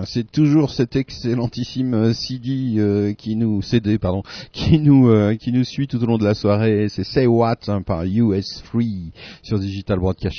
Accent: French